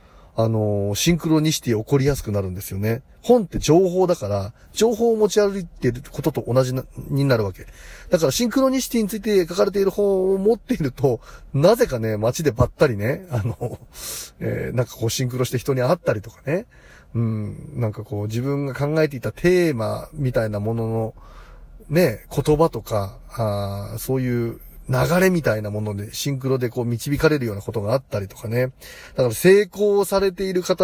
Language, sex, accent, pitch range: Japanese, male, native, 115-180 Hz